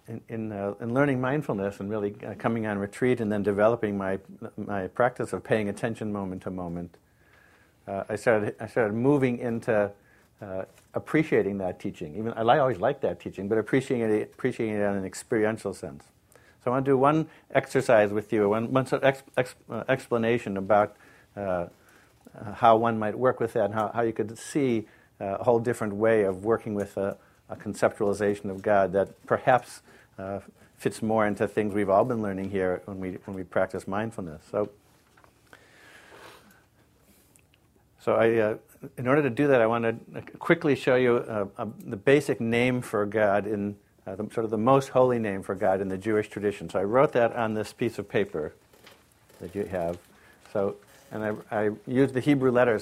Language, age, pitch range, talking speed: English, 50-69, 100-120 Hz, 190 wpm